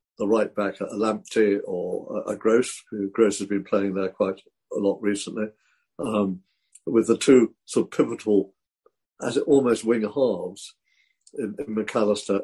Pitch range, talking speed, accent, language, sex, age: 100-120 Hz, 165 wpm, British, English, male, 50-69